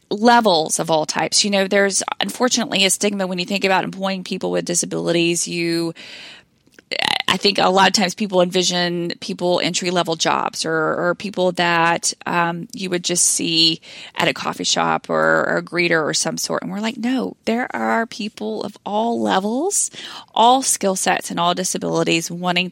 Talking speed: 175 wpm